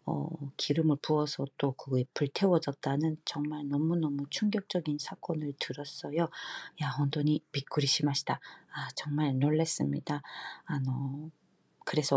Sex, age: female, 40-59